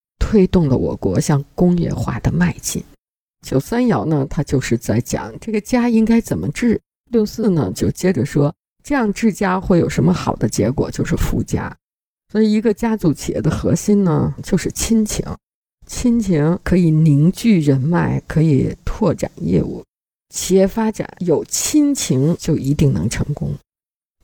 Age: 50-69